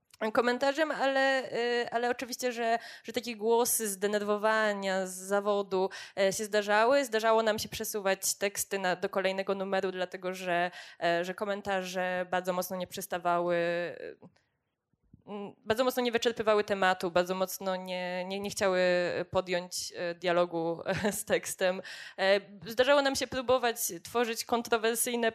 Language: Polish